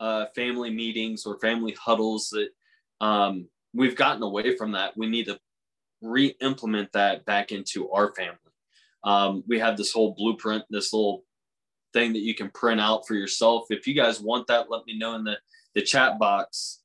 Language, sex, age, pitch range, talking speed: English, male, 20-39, 105-120 Hz, 180 wpm